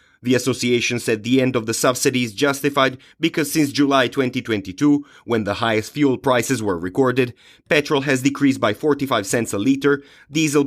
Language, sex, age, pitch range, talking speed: English, male, 30-49, 115-140 Hz, 170 wpm